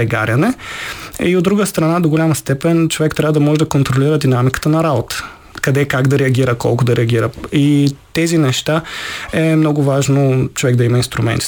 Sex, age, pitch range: male, 20-39, 125-160 Hz